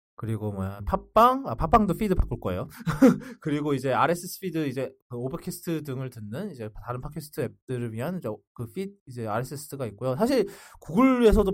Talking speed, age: 150 wpm, 20-39